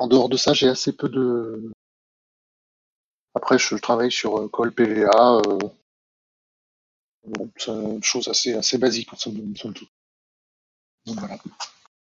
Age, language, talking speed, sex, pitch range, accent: 20-39, French, 125 wpm, male, 110-130 Hz, French